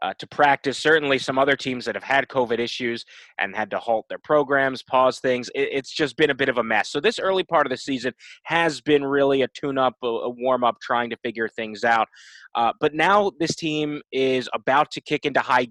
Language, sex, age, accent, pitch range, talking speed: English, male, 20-39, American, 120-145 Hz, 225 wpm